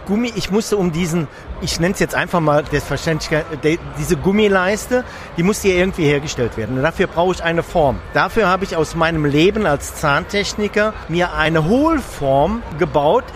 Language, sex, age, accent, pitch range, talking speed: German, male, 50-69, German, 150-195 Hz, 175 wpm